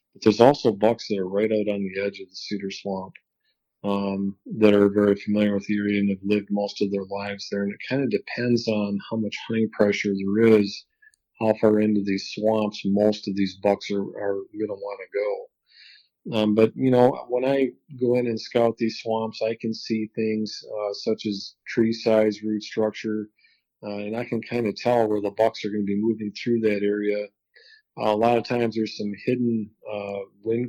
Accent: American